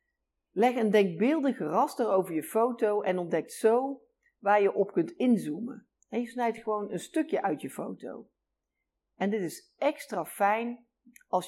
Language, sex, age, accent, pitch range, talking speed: Dutch, female, 50-69, Dutch, 175-235 Hz, 155 wpm